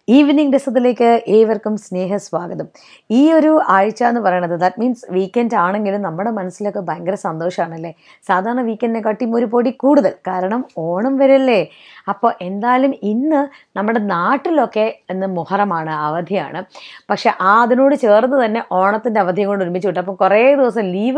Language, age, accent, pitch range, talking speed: Malayalam, 20-39, native, 185-240 Hz, 130 wpm